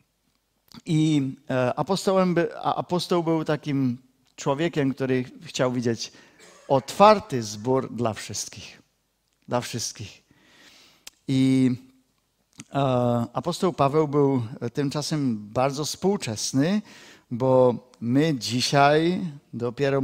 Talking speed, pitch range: 75 wpm, 125-155 Hz